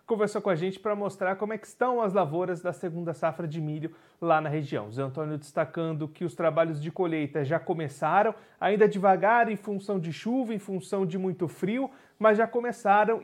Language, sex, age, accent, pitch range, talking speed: Portuguese, male, 30-49, Brazilian, 170-205 Hz, 200 wpm